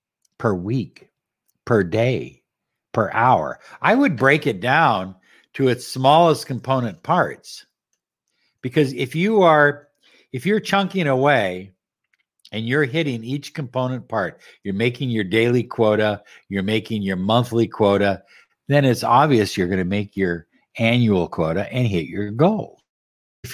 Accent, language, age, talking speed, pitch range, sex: American, English, 60-79, 140 wpm, 105-150 Hz, male